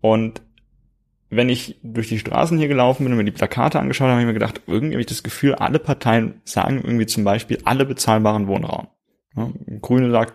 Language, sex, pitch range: German, male, 105-125 Hz